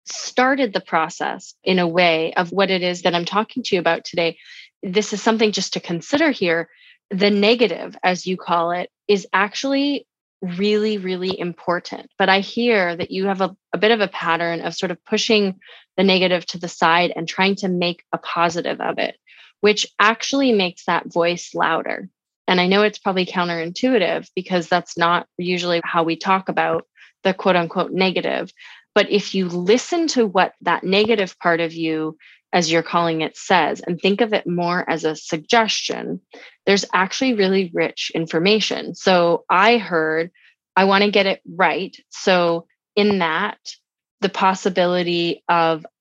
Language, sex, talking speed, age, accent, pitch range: English, female, 170 wpm, 20-39, American, 170-205 Hz